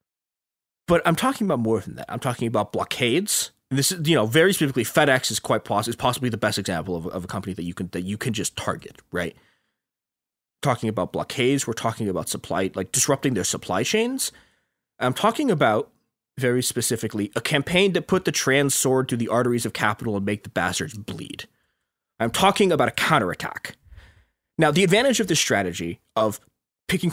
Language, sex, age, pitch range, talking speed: English, male, 20-39, 110-155 Hz, 190 wpm